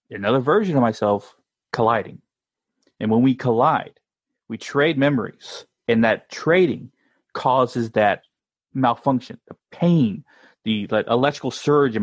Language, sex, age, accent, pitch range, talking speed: English, male, 30-49, American, 110-140 Hz, 125 wpm